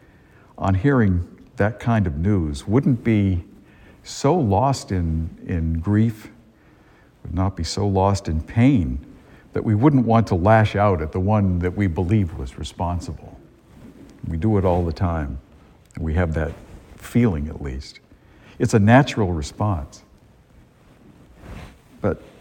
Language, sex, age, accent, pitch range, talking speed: English, male, 60-79, American, 80-110 Hz, 140 wpm